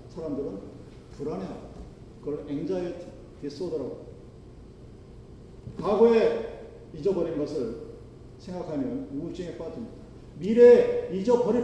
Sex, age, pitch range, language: male, 40-59, 155-245 Hz, Korean